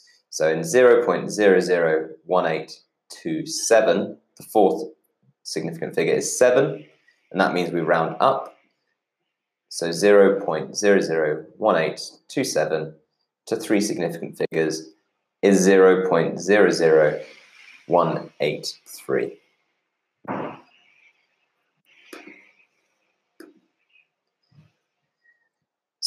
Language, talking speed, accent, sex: English, 55 wpm, British, male